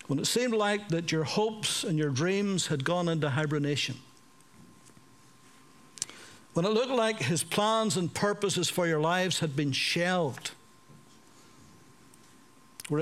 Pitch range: 150-200 Hz